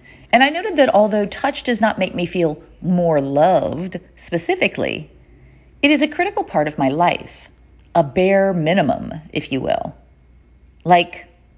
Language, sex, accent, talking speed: English, female, American, 150 wpm